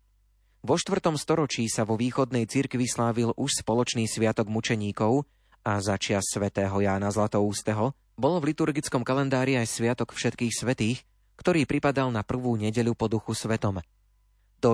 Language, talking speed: Slovak, 145 wpm